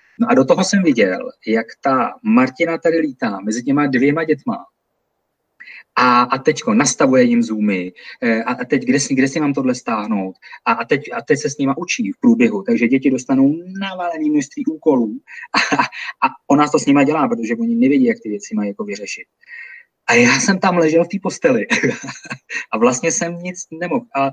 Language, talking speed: Czech, 190 wpm